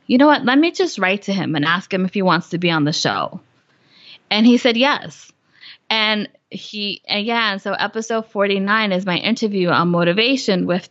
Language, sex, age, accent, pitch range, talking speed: English, female, 20-39, American, 180-225 Hz, 205 wpm